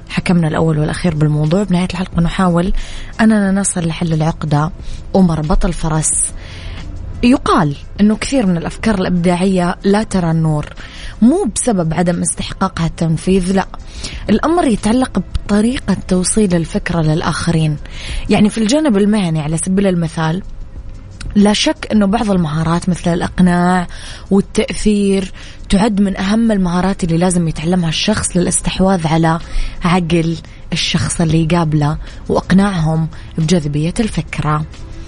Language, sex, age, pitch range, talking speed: Arabic, female, 20-39, 160-195 Hz, 115 wpm